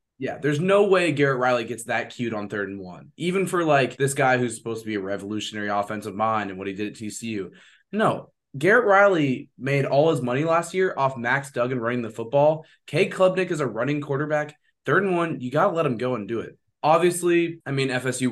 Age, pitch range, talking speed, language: 20-39, 110-150 Hz, 225 wpm, English